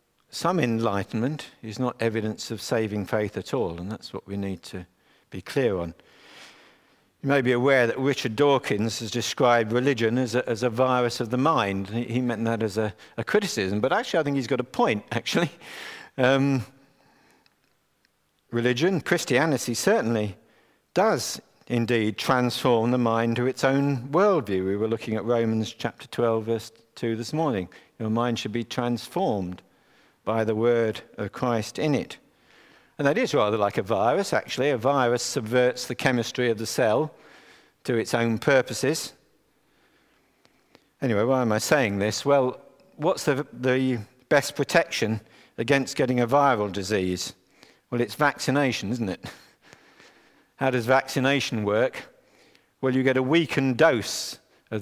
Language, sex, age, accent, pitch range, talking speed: English, male, 50-69, British, 110-130 Hz, 155 wpm